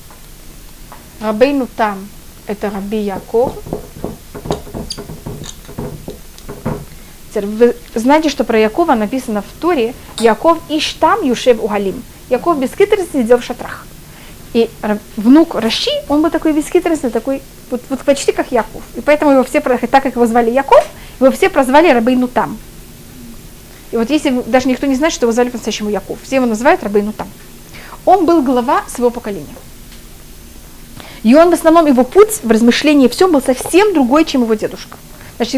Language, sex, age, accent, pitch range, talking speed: Russian, female, 30-49, native, 230-295 Hz, 150 wpm